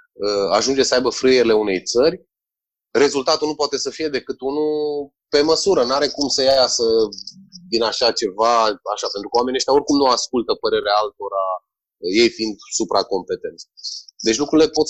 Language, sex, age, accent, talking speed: Romanian, male, 30-49, native, 155 wpm